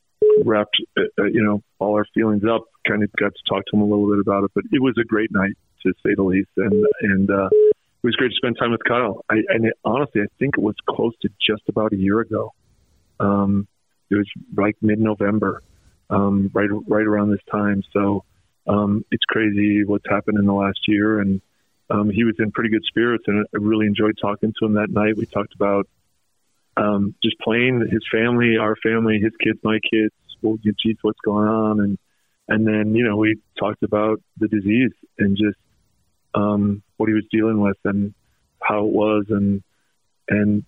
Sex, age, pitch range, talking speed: male, 40-59, 100-110 Hz, 200 wpm